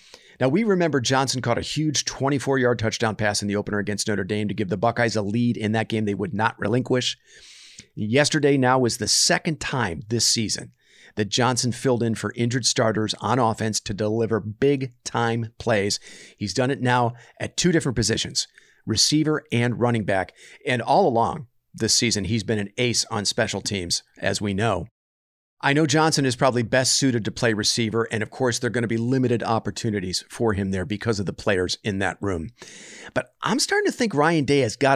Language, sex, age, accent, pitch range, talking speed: English, male, 40-59, American, 105-135 Hz, 200 wpm